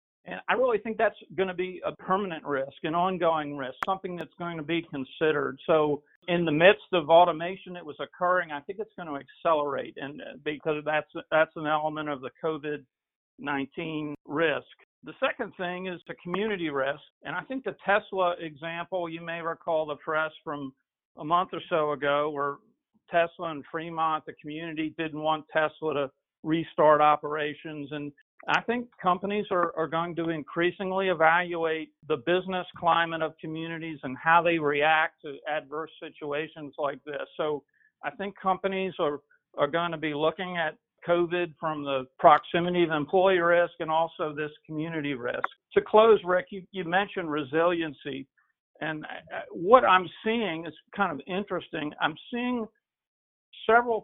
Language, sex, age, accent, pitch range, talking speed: English, male, 50-69, American, 150-185 Hz, 160 wpm